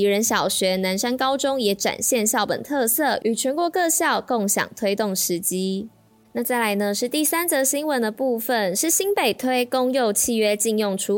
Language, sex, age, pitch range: Chinese, female, 20-39, 200-255 Hz